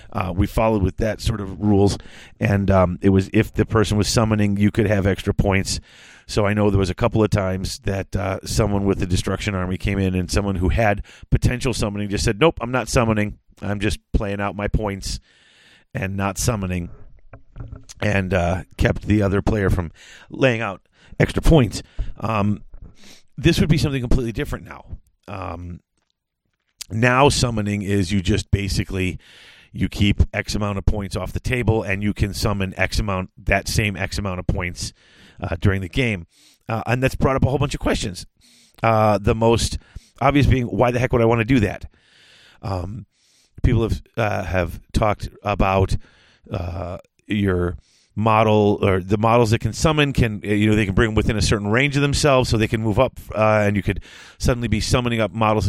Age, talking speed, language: 40-59, 195 wpm, English